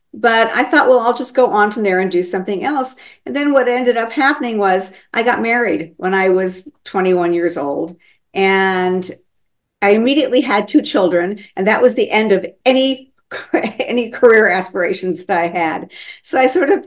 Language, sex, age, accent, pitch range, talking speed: English, female, 50-69, American, 180-240 Hz, 190 wpm